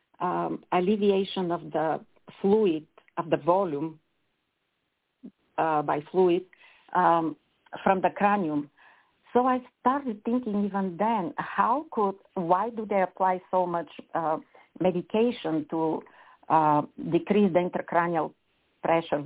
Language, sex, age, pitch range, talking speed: English, female, 50-69, 170-215 Hz, 115 wpm